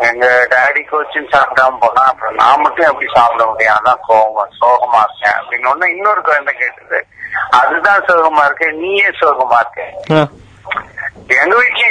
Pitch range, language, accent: 150-245 Hz, Tamil, native